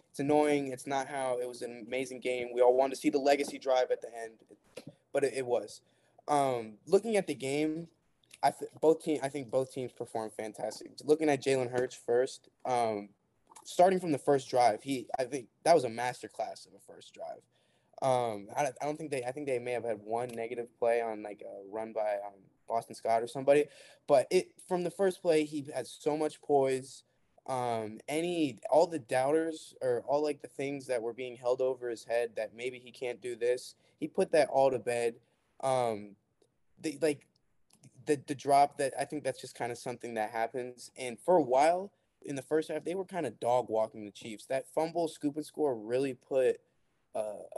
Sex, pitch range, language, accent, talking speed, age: male, 120-150 Hz, English, American, 210 wpm, 10-29